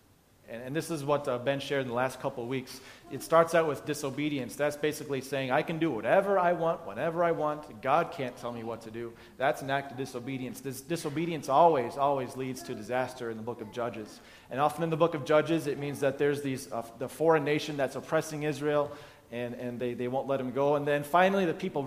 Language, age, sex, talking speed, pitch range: English, 30-49, male, 235 wpm, 130-165 Hz